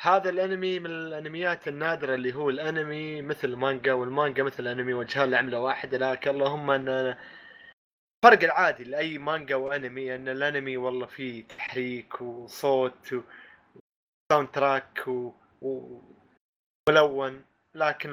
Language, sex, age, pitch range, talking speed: Arabic, male, 20-39, 125-155 Hz, 115 wpm